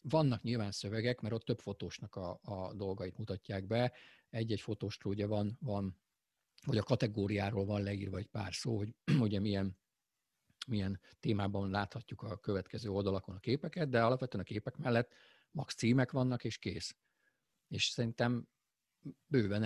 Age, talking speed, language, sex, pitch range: 50-69, 145 wpm, Hungarian, male, 105-125 Hz